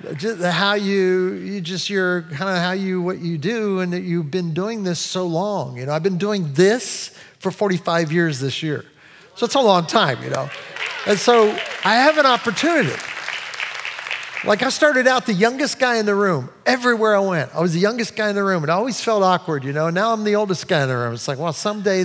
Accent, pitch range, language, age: American, 175-235 Hz, English, 50-69